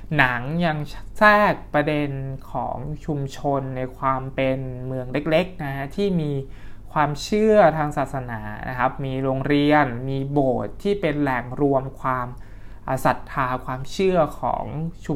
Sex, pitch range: male, 125-150 Hz